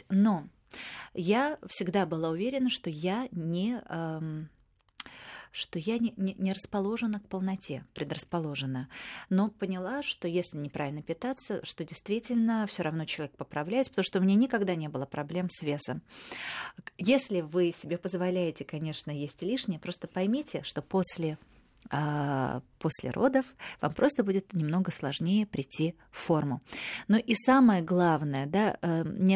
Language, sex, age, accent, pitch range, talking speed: Russian, female, 30-49, native, 165-200 Hz, 135 wpm